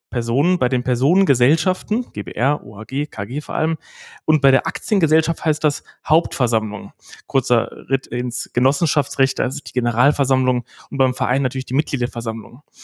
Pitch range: 125-155 Hz